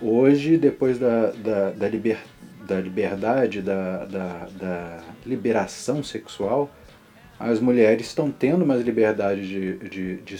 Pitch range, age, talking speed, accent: 100-165 Hz, 40-59, 125 wpm, Brazilian